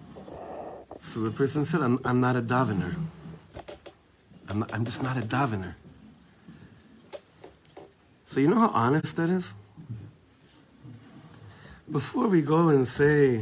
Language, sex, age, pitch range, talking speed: English, male, 50-69, 115-155 Hz, 125 wpm